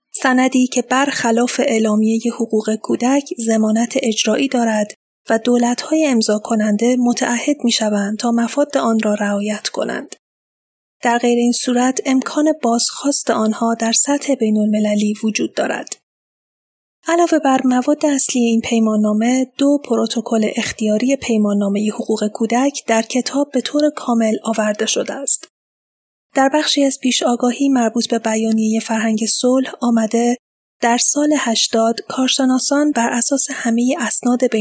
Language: Persian